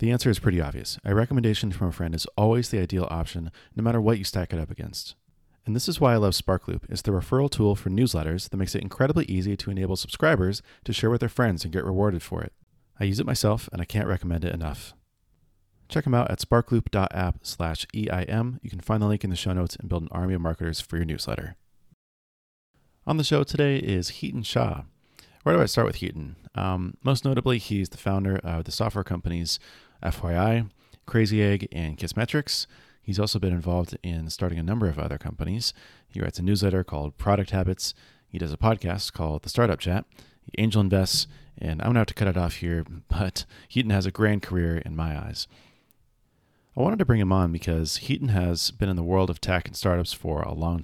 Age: 30-49